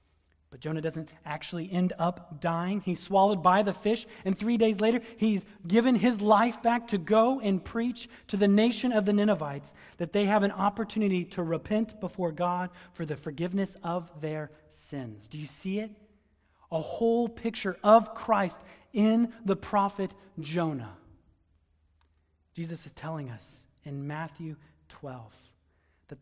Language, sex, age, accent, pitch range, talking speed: English, male, 30-49, American, 140-210 Hz, 155 wpm